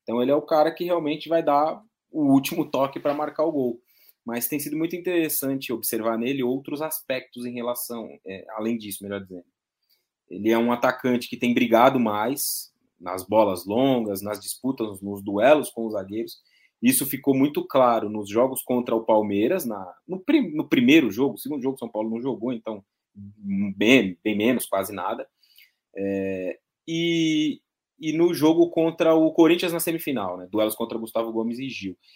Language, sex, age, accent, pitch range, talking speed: Portuguese, male, 20-39, Brazilian, 110-150 Hz, 175 wpm